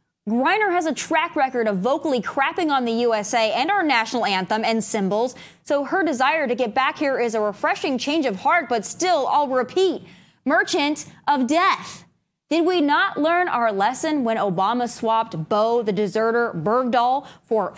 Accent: American